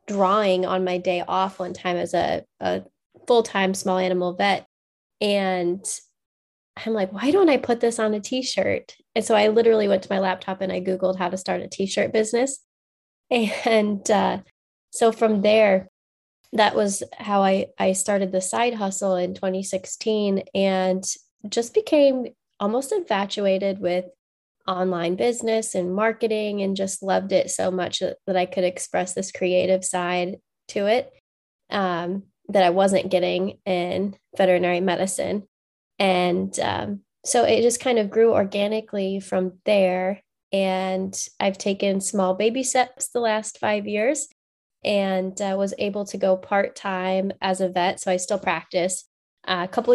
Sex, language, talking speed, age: female, English, 155 wpm, 20-39